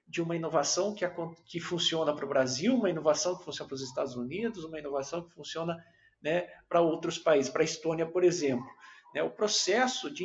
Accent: Brazilian